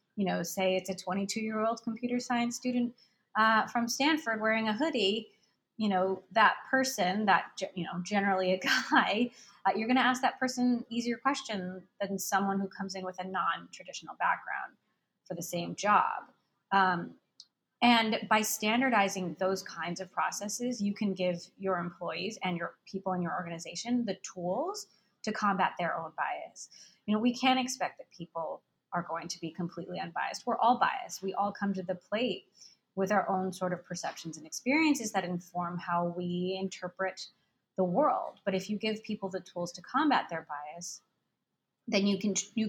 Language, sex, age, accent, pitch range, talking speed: English, female, 20-39, American, 180-220 Hz, 175 wpm